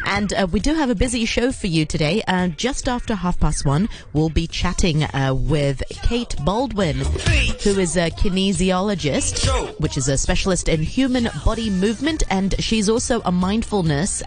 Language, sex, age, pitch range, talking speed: English, female, 30-49, 150-215 Hz, 175 wpm